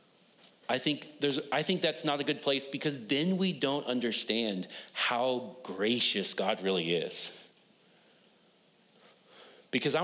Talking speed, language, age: 130 wpm, English, 40-59